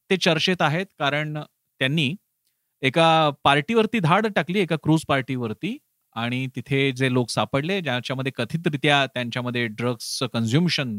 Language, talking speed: Marathi, 95 wpm